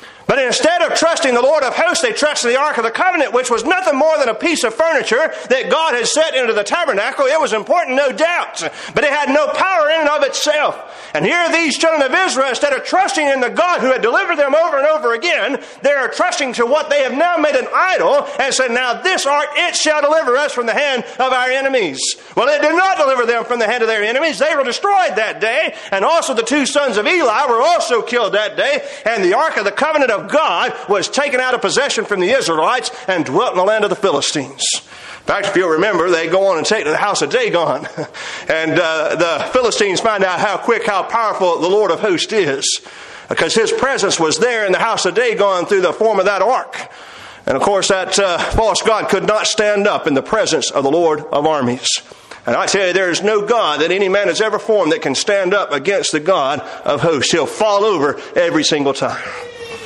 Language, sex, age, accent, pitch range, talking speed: English, male, 40-59, American, 210-320 Hz, 240 wpm